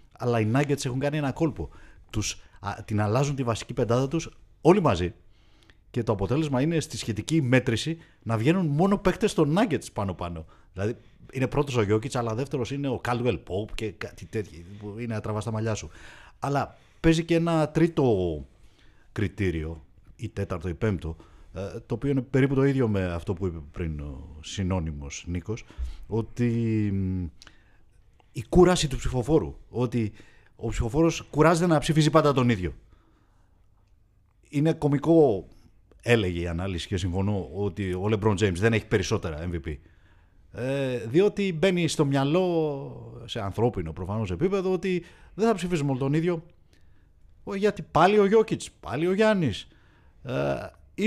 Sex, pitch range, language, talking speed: male, 95-145 Hz, Greek, 150 wpm